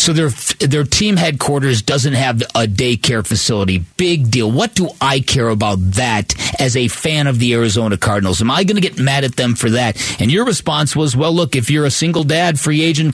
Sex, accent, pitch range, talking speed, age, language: male, American, 120-160 Hz, 220 wpm, 40-59, English